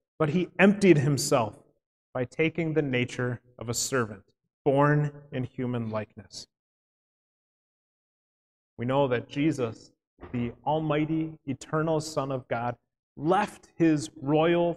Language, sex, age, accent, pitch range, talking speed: English, male, 30-49, American, 140-195 Hz, 115 wpm